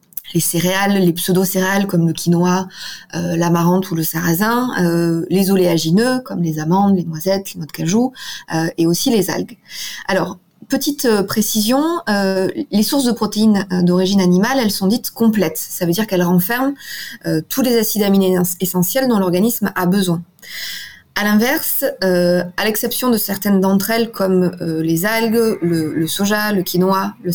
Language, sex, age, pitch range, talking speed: French, female, 20-39, 175-215 Hz, 170 wpm